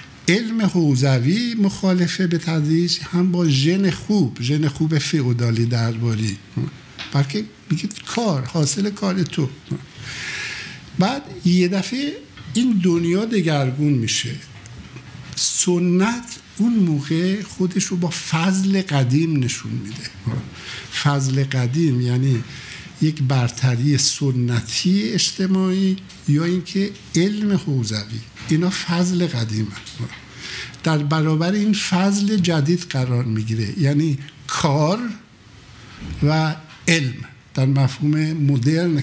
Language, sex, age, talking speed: Persian, male, 60-79, 100 wpm